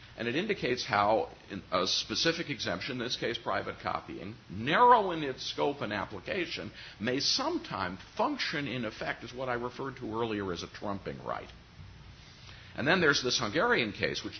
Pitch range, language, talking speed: 110-155 Hz, English, 165 wpm